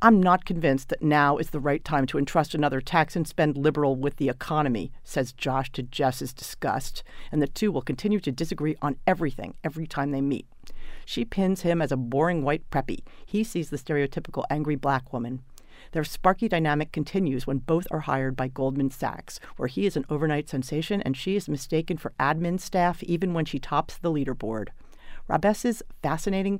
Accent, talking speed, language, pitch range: American, 190 wpm, English, 140-170 Hz